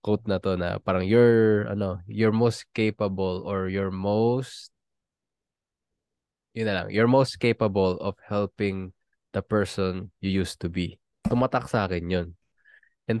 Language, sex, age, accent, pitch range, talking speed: Filipino, male, 20-39, native, 95-115 Hz, 145 wpm